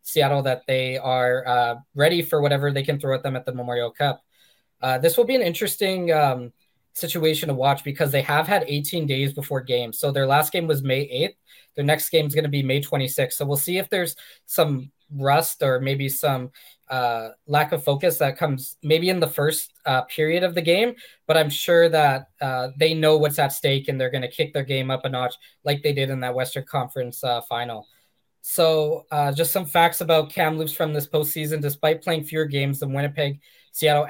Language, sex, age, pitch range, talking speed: English, male, 20-39, 130-155 Hz, 215 wpm